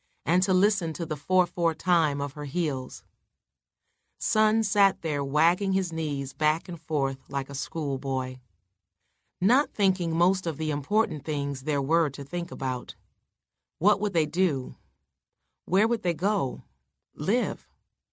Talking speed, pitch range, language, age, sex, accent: 140 wpm, 135-170 Hz, English, 40-59, female, American